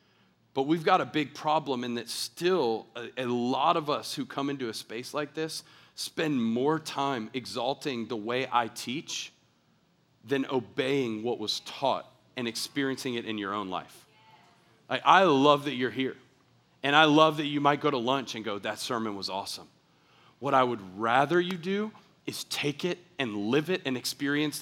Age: 40-59